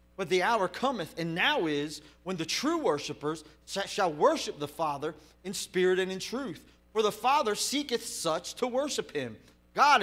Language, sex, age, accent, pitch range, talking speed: English, male, 30-49, American, 145-215 Hz, 175 wpm